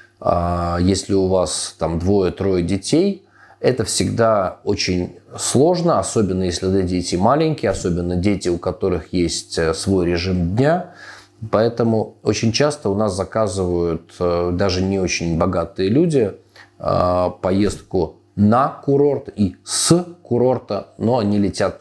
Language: Russian